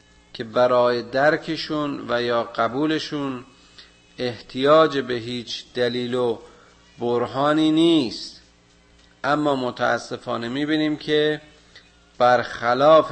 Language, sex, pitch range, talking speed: Persian, male, 115-145 Hz, 80 wpm